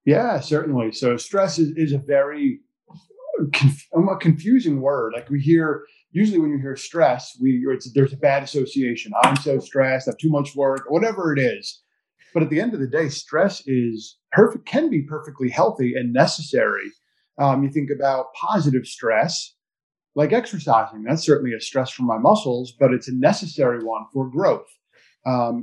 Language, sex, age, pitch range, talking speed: English, male, 30-49, 130-165 Hz, 180 wpm